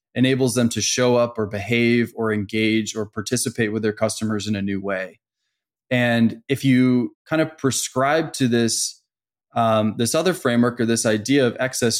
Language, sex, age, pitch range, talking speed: English, male, 20-39, 110-130 Hz, 170 wpm